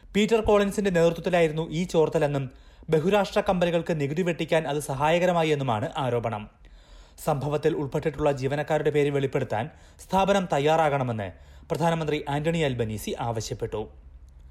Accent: native